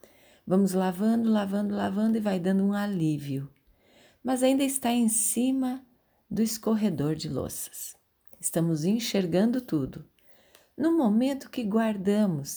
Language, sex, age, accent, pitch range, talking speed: Portuguese, female, 40-59, Brazilian, 165-220 Hz, 120 wpm